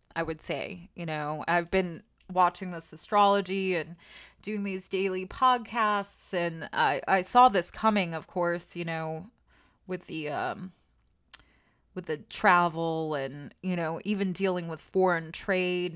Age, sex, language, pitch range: 20-39, female, English, 155-185 Hz